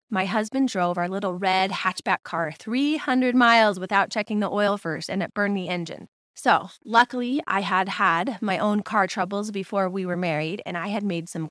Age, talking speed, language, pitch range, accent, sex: 20-39, 200 wpm, English, 190-255 Hz, American, female